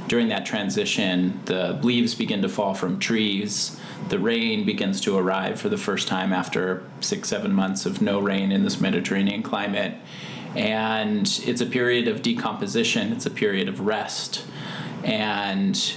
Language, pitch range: English, 145-220 Hz